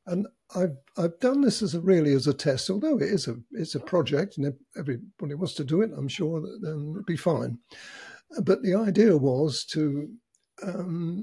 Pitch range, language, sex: 150-195 Hz, English, male